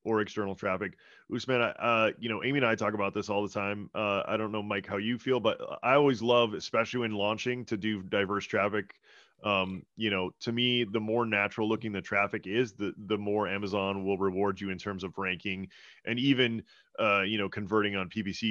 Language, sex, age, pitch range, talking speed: English, male, 20-39, 100-120 Hz, 215 wpm